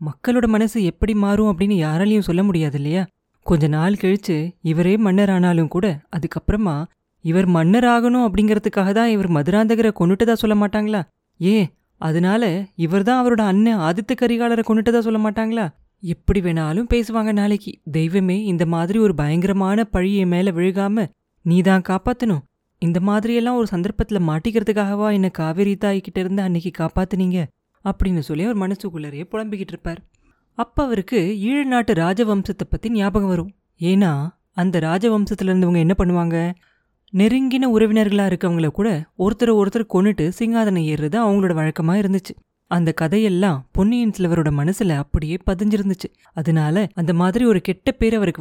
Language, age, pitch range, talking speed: Tamil, 20-39, 175-220 Hz, 130 wpm